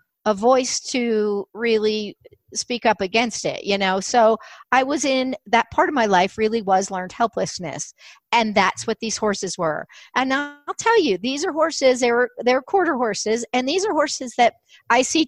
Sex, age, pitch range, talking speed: female, 50-69, 205-260 Hz, 190 wpm